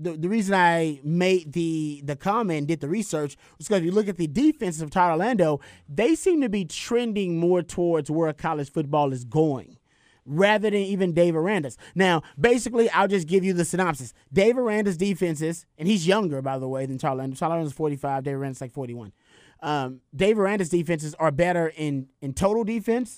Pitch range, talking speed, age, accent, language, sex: 150-195 Hz, 200 wpm, 30-49, American, English, male